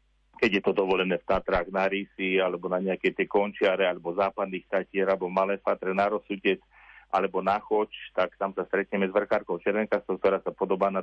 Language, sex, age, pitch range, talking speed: Slovak, male, 40-59, 95-115 Hz, 190 wpm